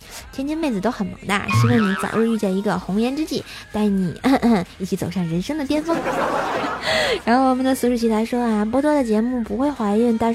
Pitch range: 195-245 Hz